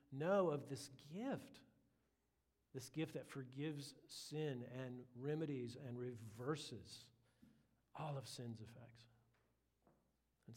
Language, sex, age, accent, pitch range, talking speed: English, male, 50-69, American, 120-140 Hz, 100 wpm